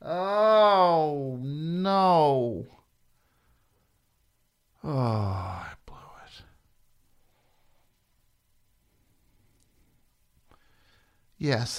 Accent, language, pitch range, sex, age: American, English, 95-110 Hz, male, 50-69